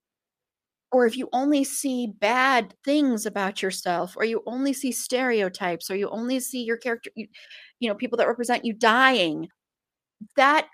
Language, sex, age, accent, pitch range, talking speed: English, female, 30-49, American, 220-275 Hz, 160 wpm